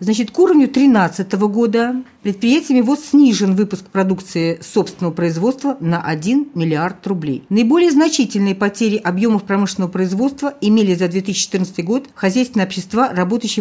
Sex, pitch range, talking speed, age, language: female, 185-235 Hz, 130 wpm, 50-69, Russian